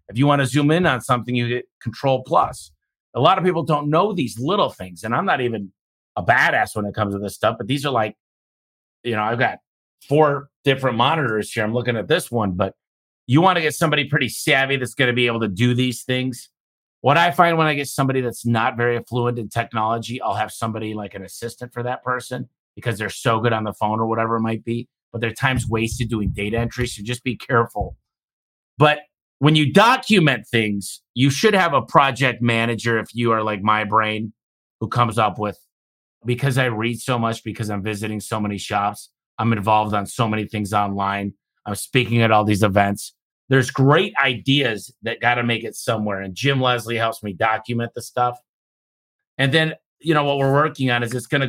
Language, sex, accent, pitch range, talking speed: English, male, American, 110-130 Hz, 215 wpm